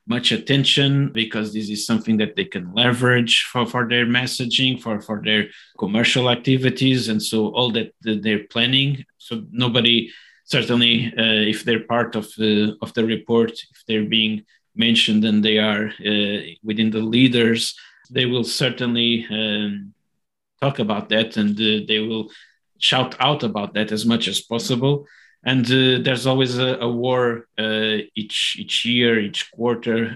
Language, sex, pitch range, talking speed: English, male, 110-125 Hz, 155 wpm